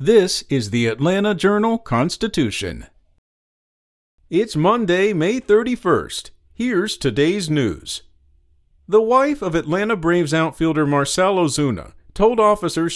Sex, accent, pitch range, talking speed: male, American, 125-190 Hz, 100 wpm